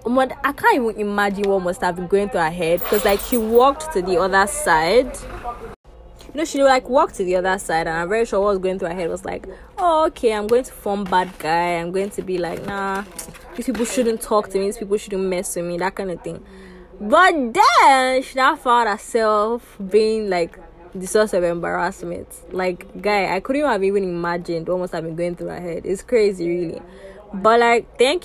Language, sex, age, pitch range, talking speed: English, female, 20-39, 180-235 Hz, 220 wpm